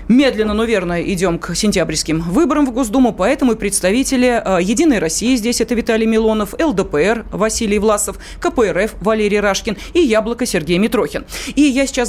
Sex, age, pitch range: female, 30-49, 195-275 Hz